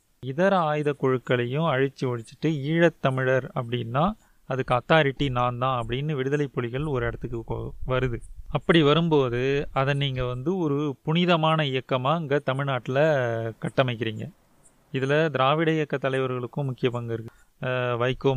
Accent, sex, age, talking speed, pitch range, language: native, male, 30-49, 120 wpm, 125-150 Hz, Tamil